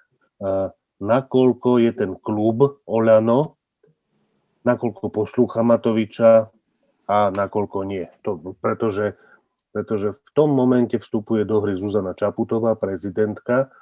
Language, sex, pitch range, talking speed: Slovak, male, 105-125 Hz, 100 wpm